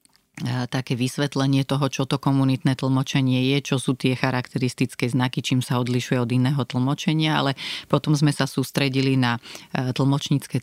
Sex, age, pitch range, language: female, 30-49, 125-140 Hz, Slovak